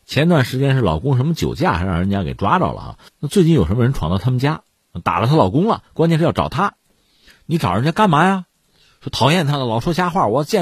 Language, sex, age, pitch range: Chinese, male, 50-69, 90-150 Hz